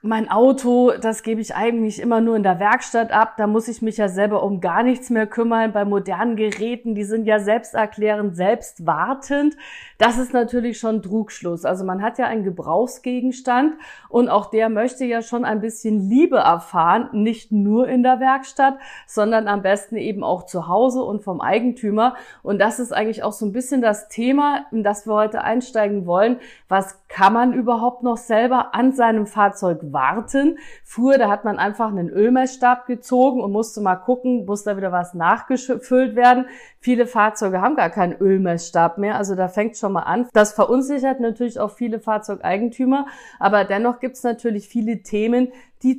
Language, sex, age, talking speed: German, female, 50-69, 180 wpm